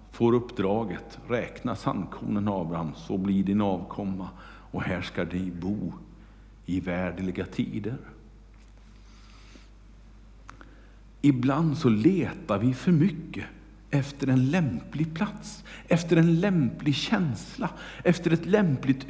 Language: Swedish